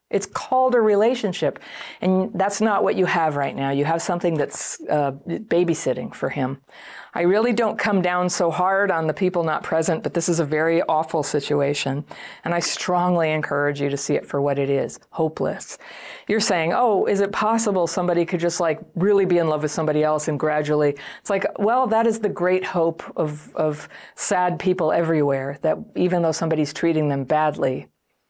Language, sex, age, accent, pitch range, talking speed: English, female, 50-69, American, 150-185 Hz, 195 wpm